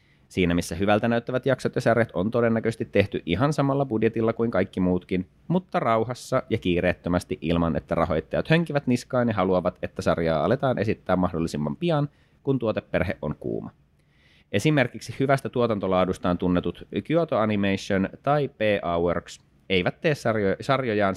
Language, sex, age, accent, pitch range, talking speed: Finnish, male, 30-49, native, 90-120 Hz, 140 wpm